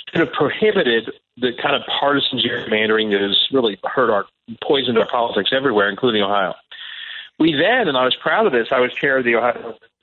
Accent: American